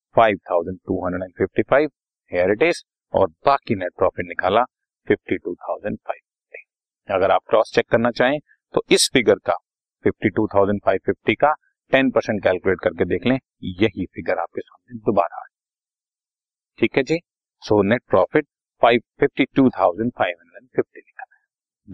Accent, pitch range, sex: native, 100-125 Hz, male